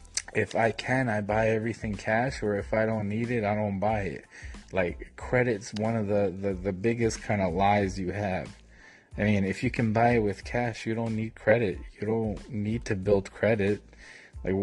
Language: English